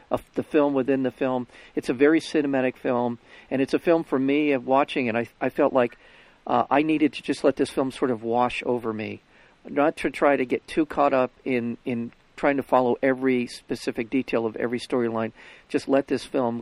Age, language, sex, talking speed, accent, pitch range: 50-69, English, male, 215 wpm, American, 115-135 Hz